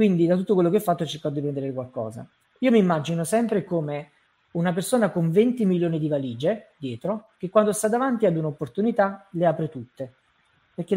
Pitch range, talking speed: 150-200 Hz, 185 wpm